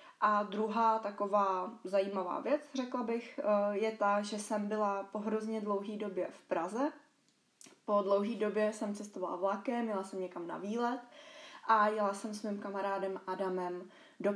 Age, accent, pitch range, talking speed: 20-39, native, 190-215 Hz, 155 wpm